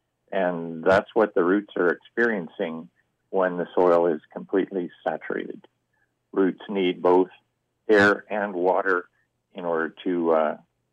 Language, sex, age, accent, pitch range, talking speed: English, male, 50-69, American, 85-100 Hz, 125 wpm